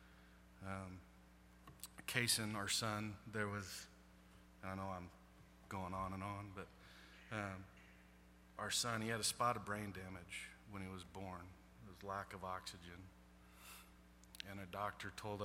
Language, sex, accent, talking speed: English, male, American, 145 wpm